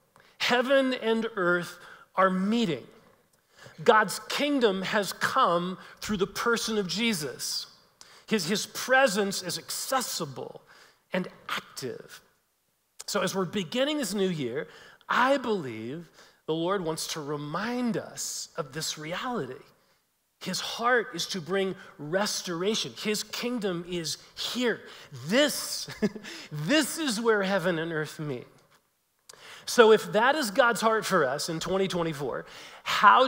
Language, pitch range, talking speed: English, 175-225 Hz, 125 wpm